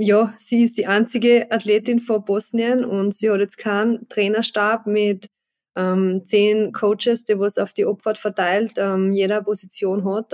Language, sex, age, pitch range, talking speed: German, female, 20-39, 210-235 Hz, 165 wpm